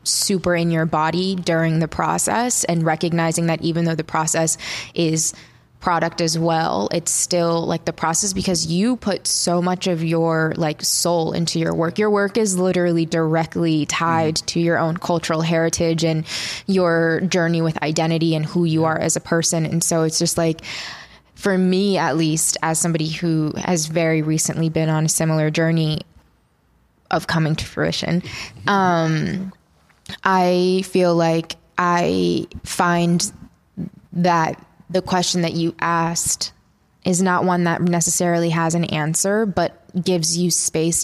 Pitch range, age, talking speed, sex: 160-175 Hz, 20-39, 155 wpm, female